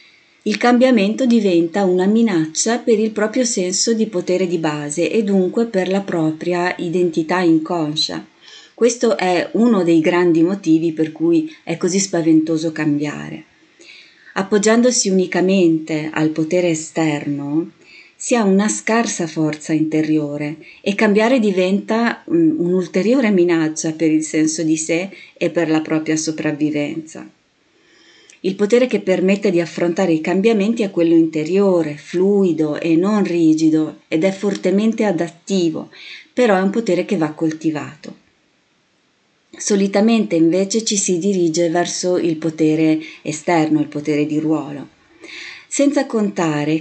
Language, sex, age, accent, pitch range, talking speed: Italian, female, 30-49, native, 160-210 Hz, 125 wpm